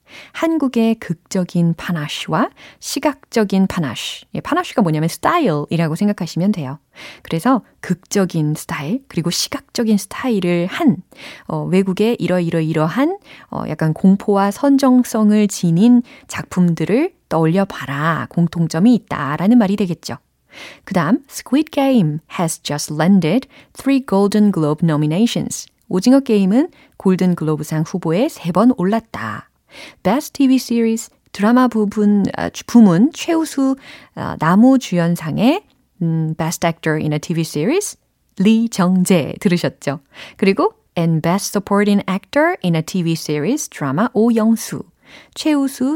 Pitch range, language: 165-240 Hz, Korean